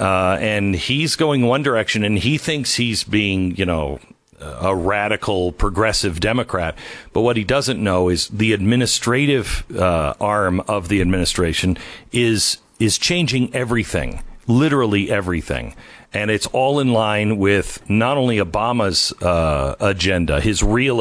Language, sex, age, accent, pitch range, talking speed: English, male, 50-69, American, 95-125 Hz, 140 wpm